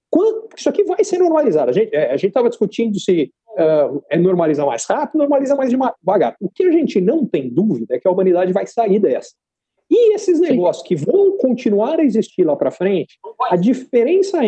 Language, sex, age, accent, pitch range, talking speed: Portuguese, male, 50-69, Brazilian, 200-320 Hz, 190 wpm